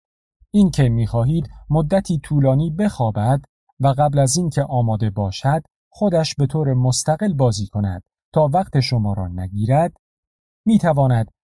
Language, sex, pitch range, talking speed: Persian, male, 105-155 Hz, 120 wpm